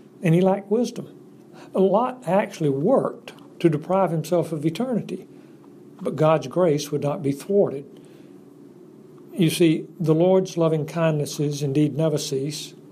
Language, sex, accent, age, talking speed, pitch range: English, male, American, 60-79, 135 wpm, 145-175 Hz